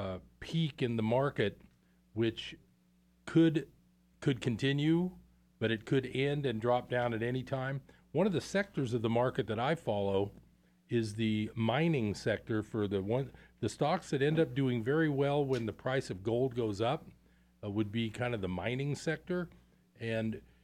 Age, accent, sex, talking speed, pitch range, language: 40-59, American, male, 175 wpm, 100-135 Hz, English